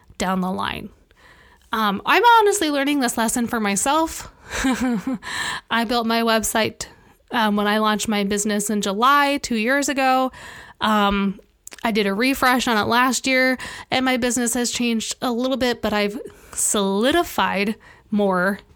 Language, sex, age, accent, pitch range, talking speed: English, female, 20-39, American, 205-265 Hz, 150 wpm